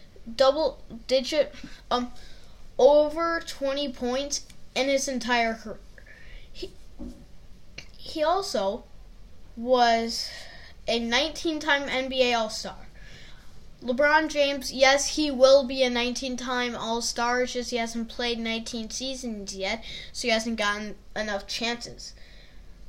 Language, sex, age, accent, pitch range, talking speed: English, female, 10-29, American, 220-275 Hz, 110 wpm